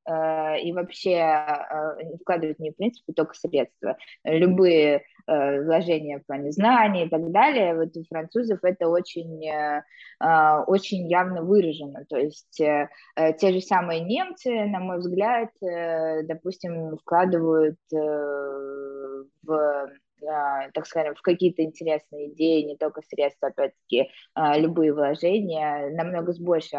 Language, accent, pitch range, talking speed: Russian, native, 155-180 Hz, 115 wpm